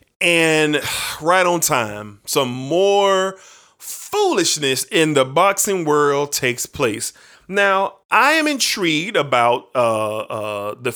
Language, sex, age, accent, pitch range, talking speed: English, male, 30-49, American, 135-205 Hz, 115 wpm